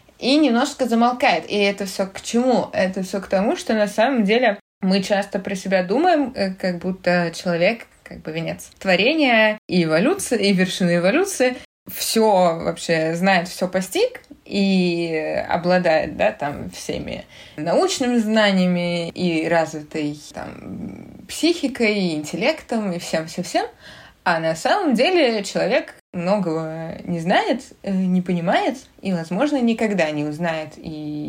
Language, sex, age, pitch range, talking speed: Russian, female, 20-39, 175-230 Hz, 135 wpm